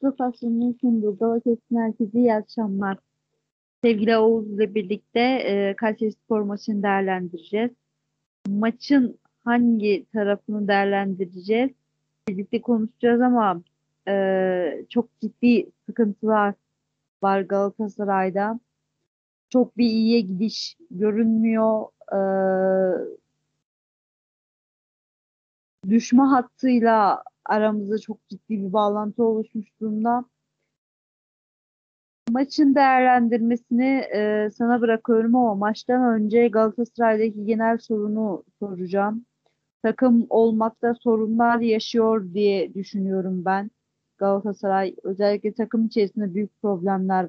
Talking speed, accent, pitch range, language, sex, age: 80 wpm, native, 200-235 Hz, Turkish, female, 40-59